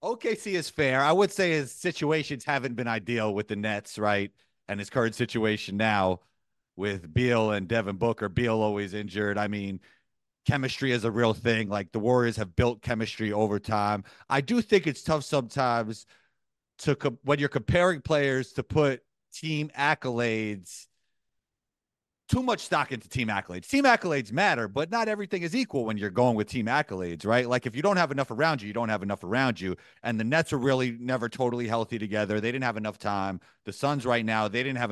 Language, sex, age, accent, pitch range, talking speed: English, male, 30-49, American, 110-150 Hz, 200 wpm